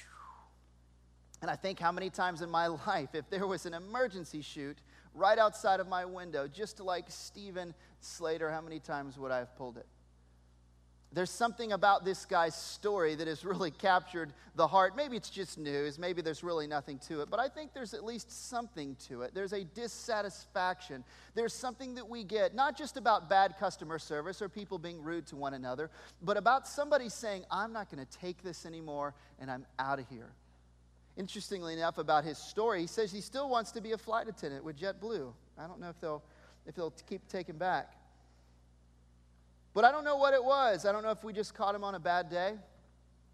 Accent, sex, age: American, male, 40-59